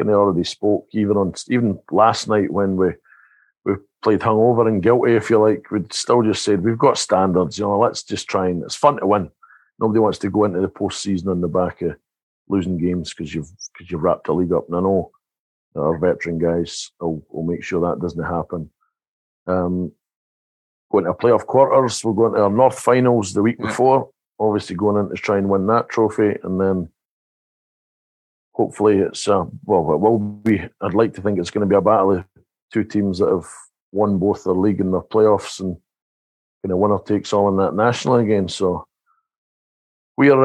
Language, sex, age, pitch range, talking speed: English, male, 50-69, 90-110 Hz, 205 wpm